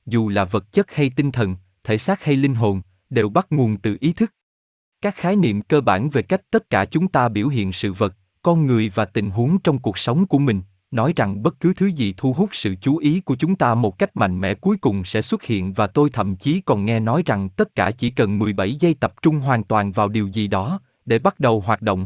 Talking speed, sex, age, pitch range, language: 255 wpm, male, 20-39, 105-150 Hz, Vietnamese